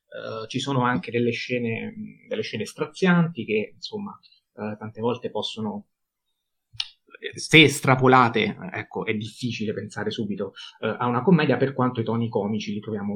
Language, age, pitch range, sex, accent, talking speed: Italian, 30-49, 120-155 Hz, male, native, 150 wpm